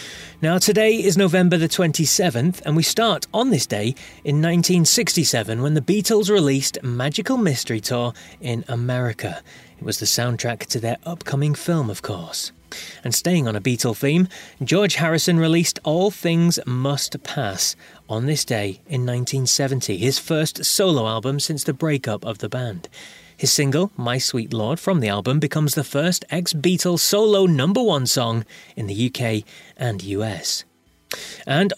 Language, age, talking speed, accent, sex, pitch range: English, 30-49, 155 wpm, British, male, 120-175 Hz